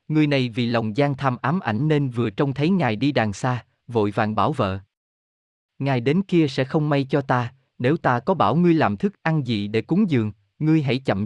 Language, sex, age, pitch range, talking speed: Vietnamese, male, 20-39, 105-150 Hz, 230 wpm